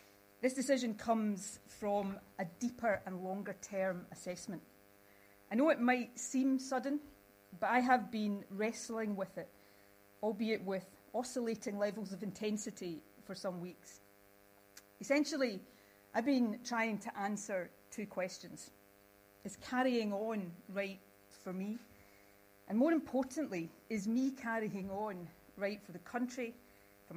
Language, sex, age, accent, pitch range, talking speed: English, female, 40-59, British, 155-225 Hz, 130 wpm